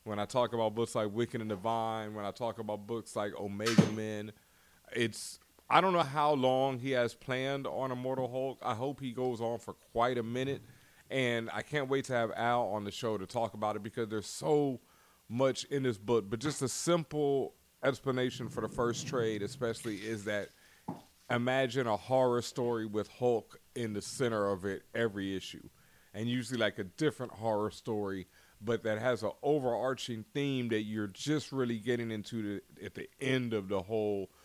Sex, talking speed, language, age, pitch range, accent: male, 190 wpm, English, 30-49, 110-130 Hz, American